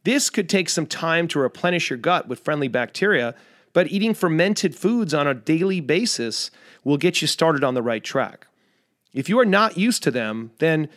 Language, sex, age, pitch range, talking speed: English, male, 40-59, 145-190 Hz, 195 wpm